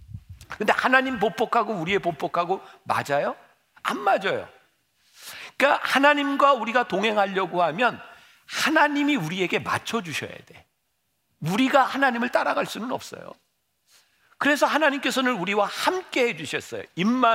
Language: Korean